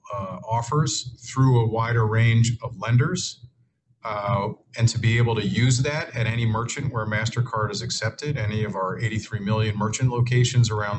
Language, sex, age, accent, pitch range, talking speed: English, male, 40-59, American, 110-125 Hz, 170 wpm